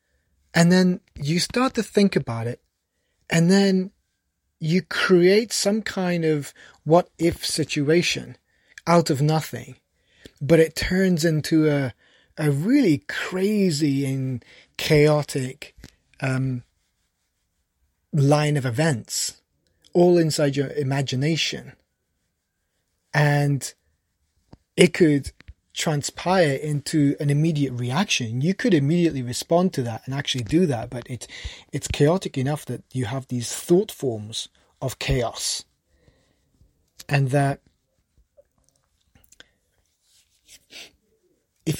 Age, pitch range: 30-49, 125-170 Hz